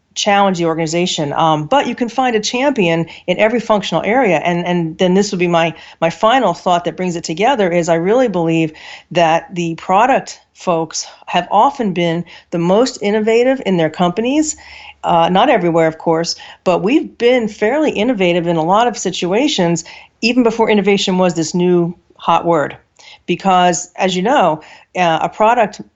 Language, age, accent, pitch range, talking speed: English, 40-59, American, 170-205 Hz, 175 wpm